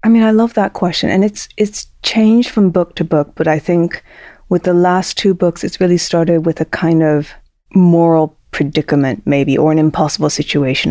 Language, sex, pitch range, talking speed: English, female, 150-175 Hz, 200 wpm